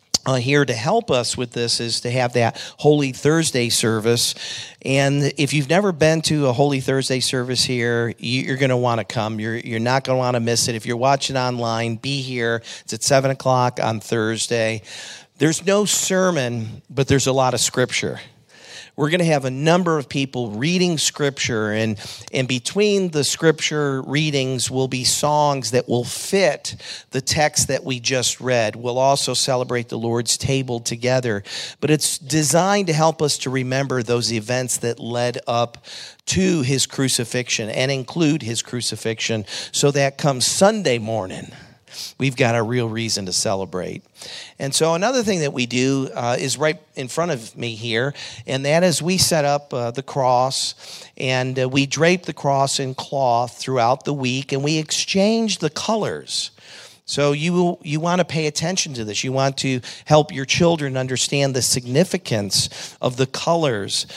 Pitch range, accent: 120-150 Hz, American